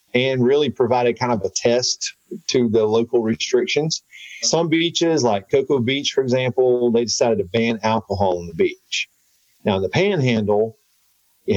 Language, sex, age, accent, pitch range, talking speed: English, male, 40-59, American, 110-150 Hz, 155 wpm